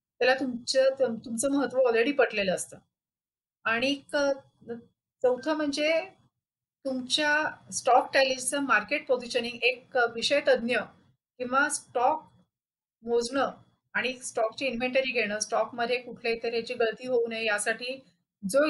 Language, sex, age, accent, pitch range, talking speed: Marathi, female, 30-49, native, 230-270 Hz, 105 wpm